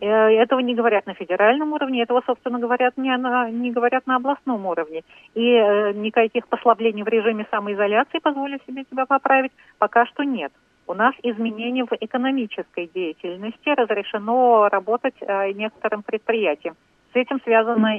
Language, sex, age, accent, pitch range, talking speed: Russian, female, 40-59, native, 195-240 Hz, 135 wpm